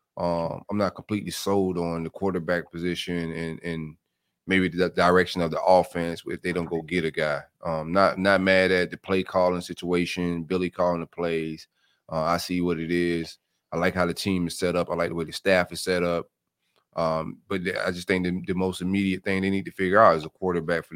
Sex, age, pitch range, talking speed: male, 30-49, 85-95 Hz, 230 wpm